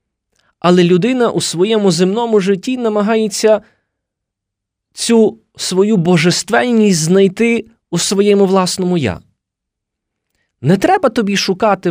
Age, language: 20-39, Ukrainian